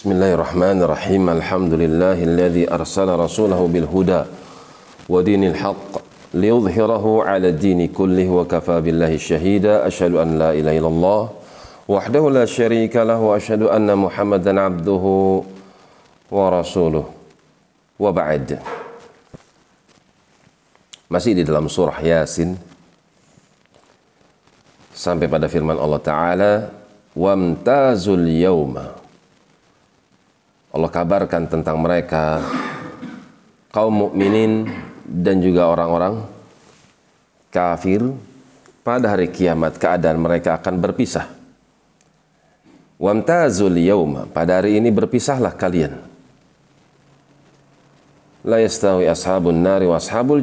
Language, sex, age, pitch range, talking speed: Indonesian, male, 40-59, 85-105 Hz, 75 wpm